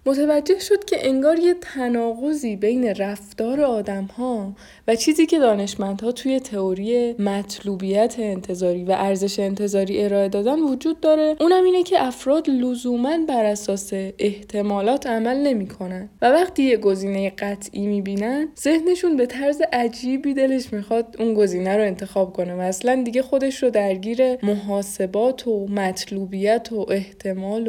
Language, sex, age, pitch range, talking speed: Persian, female, 20-39, 195-260 Hz, 135 wpm